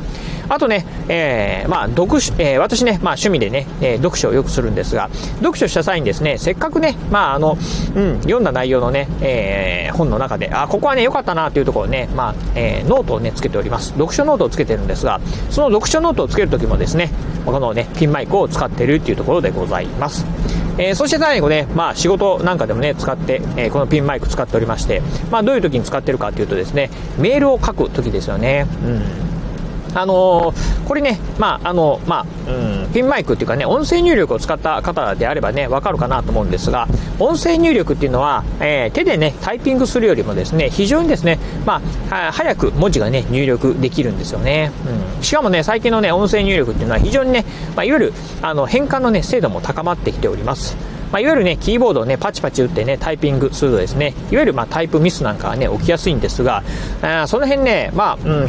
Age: 40-59